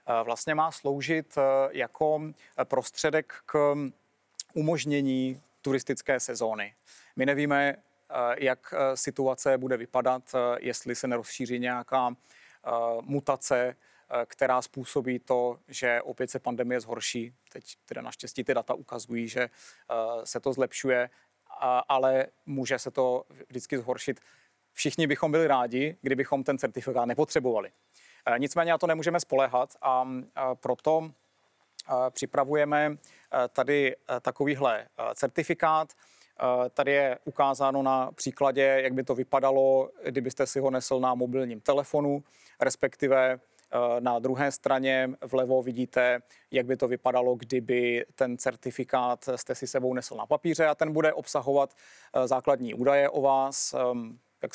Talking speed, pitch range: 120 wpm, 125-140 Hz